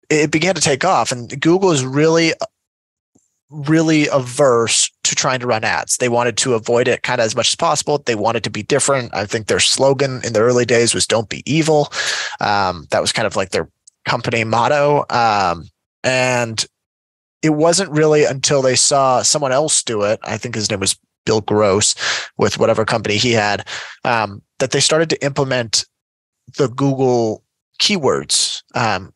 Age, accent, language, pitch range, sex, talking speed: 20-39, American, English, 110-145 Hz, male, 180 wpm